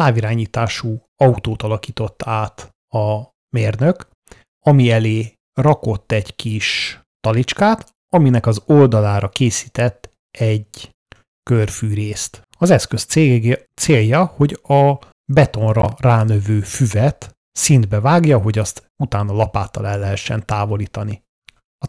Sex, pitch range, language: male, 105-130 Hz, Hungarian